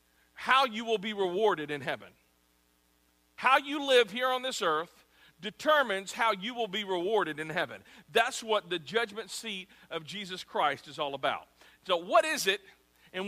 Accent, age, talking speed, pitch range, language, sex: American, 50-69, 170 wpm, 175-235 Hz, English, male